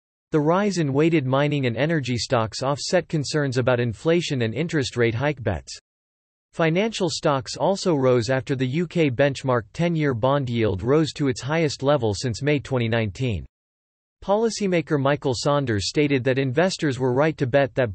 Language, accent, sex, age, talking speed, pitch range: English, American, male, 40-59, 155 wpm, 120-155 Hz